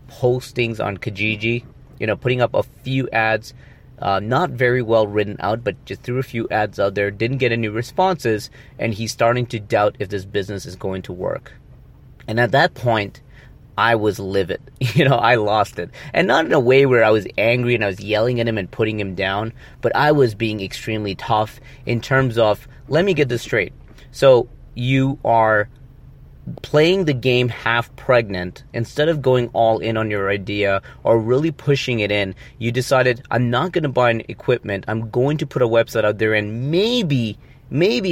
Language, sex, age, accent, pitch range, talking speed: English, male, 30-49, American, 105-130 Hz, 200 wpm